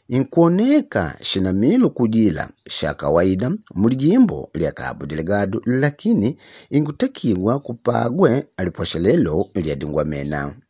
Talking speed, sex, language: 80 wpm, male, English